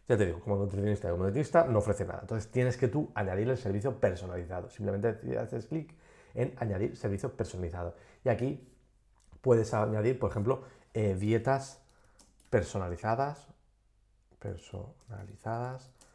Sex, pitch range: male, 100-125 Hz